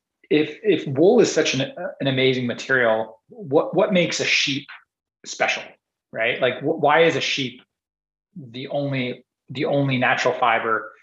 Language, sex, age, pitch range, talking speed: English, male, 30-49, 110-130 Hz, 160 wpm